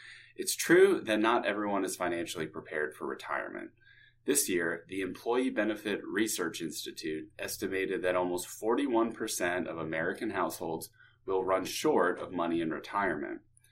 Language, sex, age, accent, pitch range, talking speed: English, male, 30-49, American, 95-130 Hz, 135 wpm